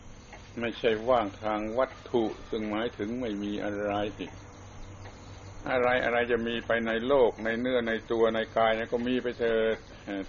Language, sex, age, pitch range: Thai, male, 60-79, 100-115 Hz